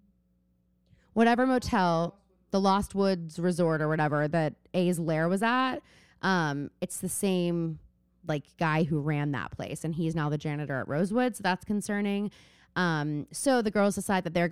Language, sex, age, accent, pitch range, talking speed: English, female, 20-39, American, 160-210 Hz, 165 wpm